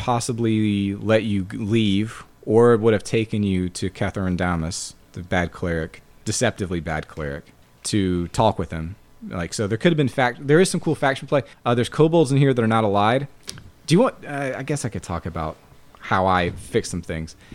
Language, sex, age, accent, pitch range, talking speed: English, male, 30-49, American, 90-115 Hz, 200 wpm